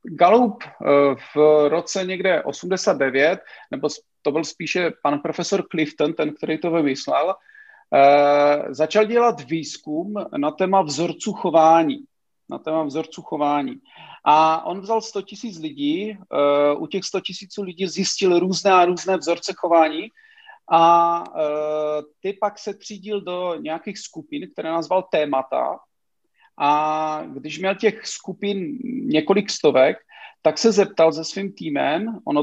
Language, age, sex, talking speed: Czech, 40-59, male, 125 wpm